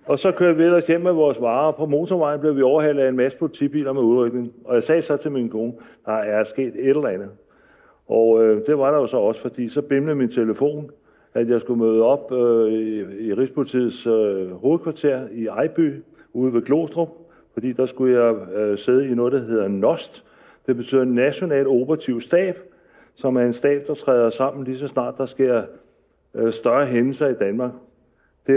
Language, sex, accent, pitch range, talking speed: Danish, male, native, 120-145 Hz, 205 wpm